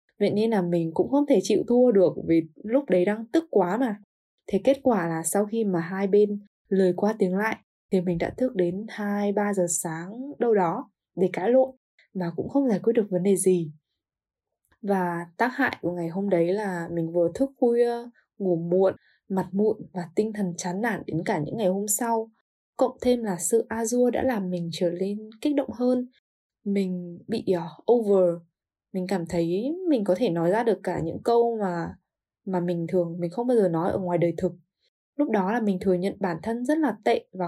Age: 10-29